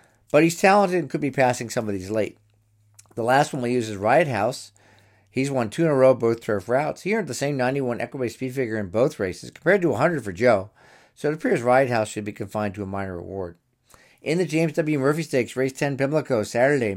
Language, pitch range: English, 105-135 Hz